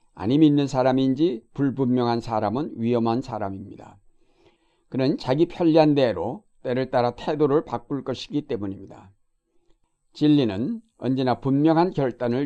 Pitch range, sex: 115-140 Hz, male